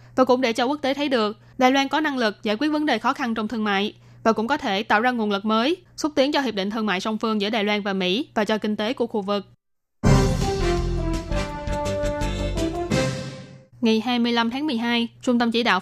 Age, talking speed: 10-29, 230 wpm